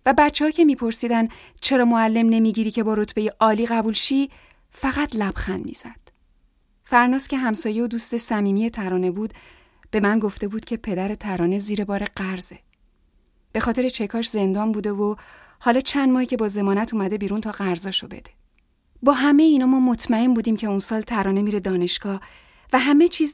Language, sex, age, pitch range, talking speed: Persian, female, 30-49, 205-265 Hz, 170 wpm